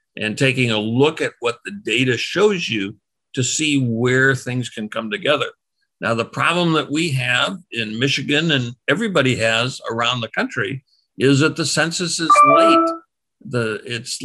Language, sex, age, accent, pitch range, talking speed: English, male, 60-79, American, 125-165 Hz, 165 wpm